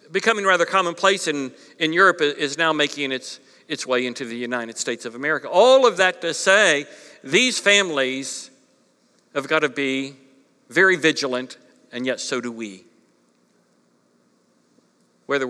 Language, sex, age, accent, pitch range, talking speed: English, male, 60-79, American, 155-195 Hz, 145 wpm